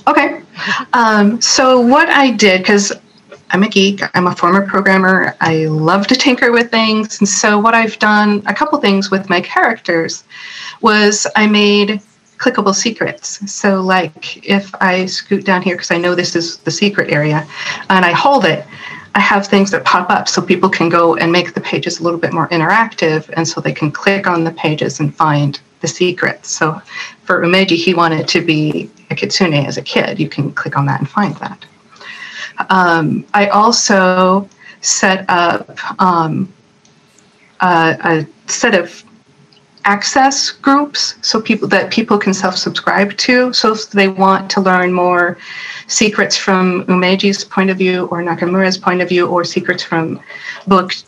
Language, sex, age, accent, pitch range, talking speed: English, female, 40-59, American, 175-210 Hz, 175 wpm